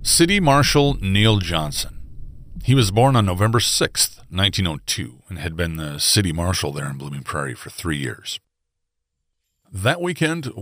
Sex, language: male, English